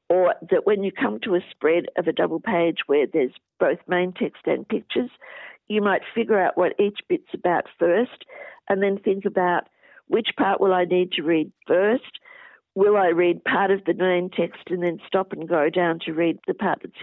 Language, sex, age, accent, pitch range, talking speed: English, female, 50-69, Australian, 175-235 Hz, 210 wpm